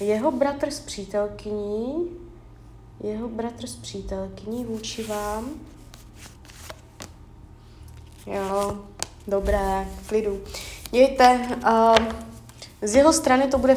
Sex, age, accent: female, 20-39, native